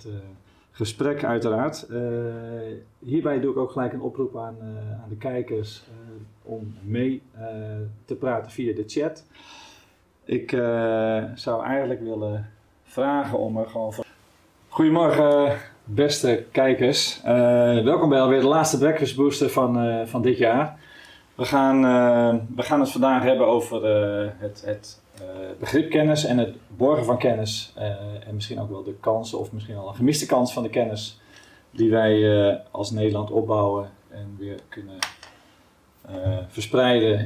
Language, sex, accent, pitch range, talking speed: Dutch, male, Dutch, 105-130 Hz, 150 wpm